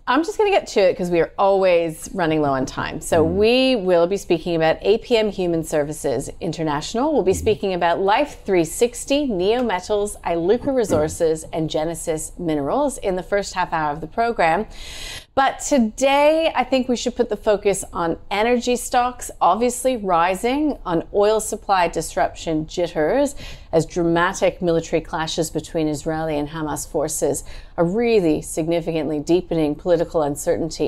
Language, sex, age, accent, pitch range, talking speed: English, female, 30-49, American, 160-230 Hz, 150 wpm